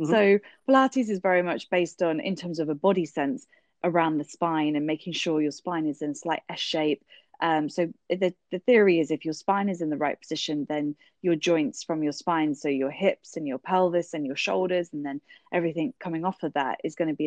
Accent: British